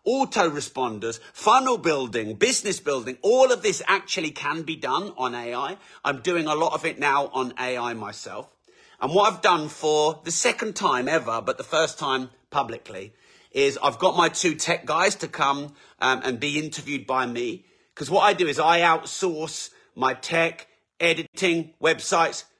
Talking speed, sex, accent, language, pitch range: 175 wpm, male, British, English, 130-170 Hz